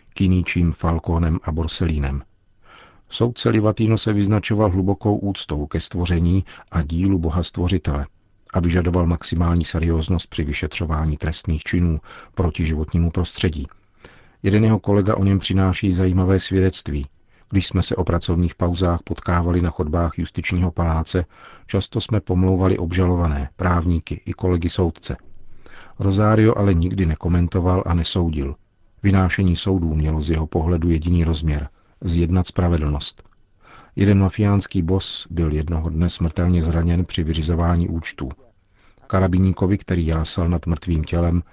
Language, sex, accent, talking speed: Czech, male, native, 125 wpm